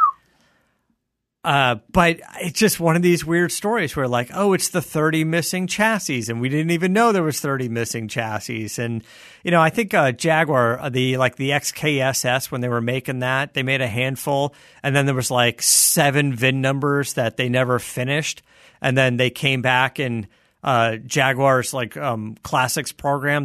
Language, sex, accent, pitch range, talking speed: English, male, American, 120-155 Hz, 180 wpm